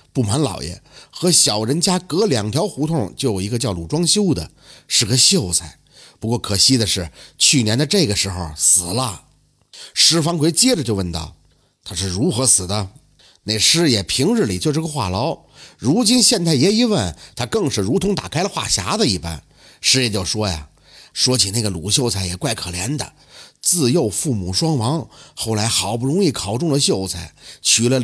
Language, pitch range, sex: Chinese, 100-165 Hz, male